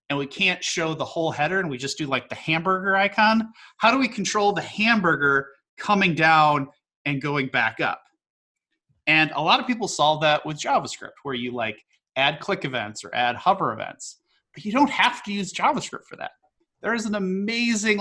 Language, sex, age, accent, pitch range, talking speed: English, male, 30-49, American, 150-205 Hz, 195 wpm